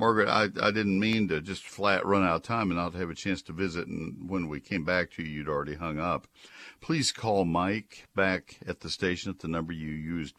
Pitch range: 70-85 Hz